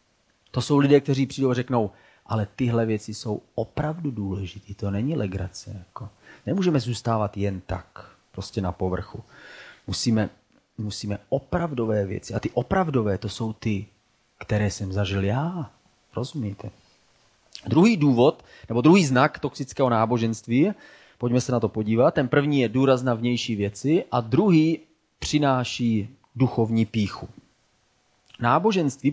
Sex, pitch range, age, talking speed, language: male, 105-140 Hz, 30-49, 130 wpm, Czech